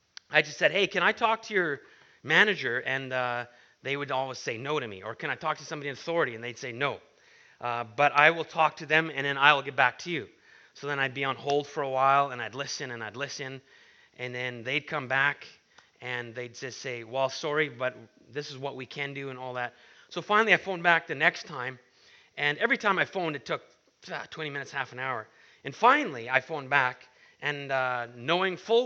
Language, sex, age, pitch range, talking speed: English, male, 30-49, 130-160 Hz, 230 wpm